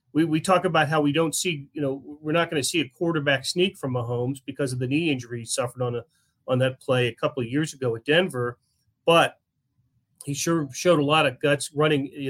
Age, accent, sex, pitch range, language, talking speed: 40-59, American, male, 125-155 Hz, English, 240 wpm